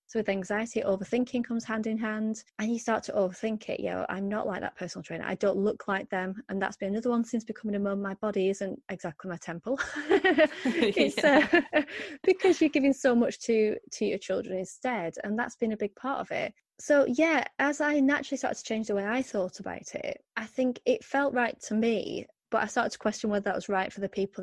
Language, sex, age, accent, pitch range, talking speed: English, female, 20-39, British, 195-240 Hz, 230 wpm